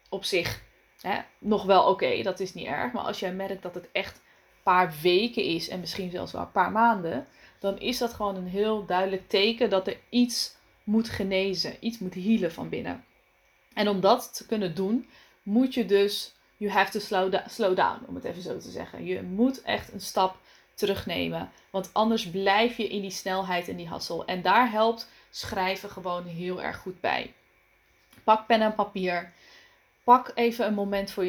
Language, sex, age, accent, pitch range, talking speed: Dutch, female, 20-39, Dutch, 185-225 Hz, 200 wpm